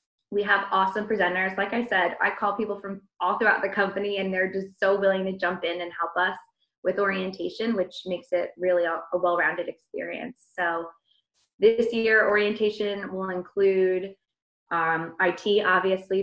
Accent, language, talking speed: American, English, 165 wpm